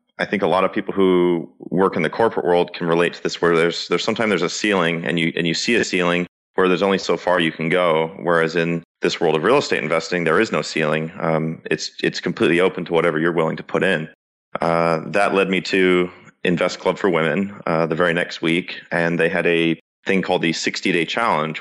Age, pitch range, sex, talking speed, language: 30-49, 80-90 Hz, male, 235 wpm, English